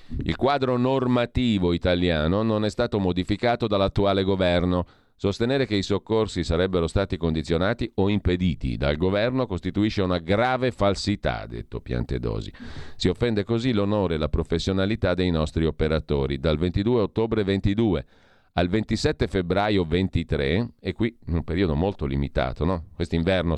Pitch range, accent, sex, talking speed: 80-105 Hz, native, male, 135 wpm